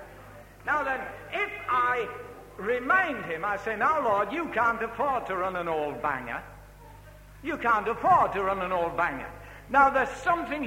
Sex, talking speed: male, 165 wpm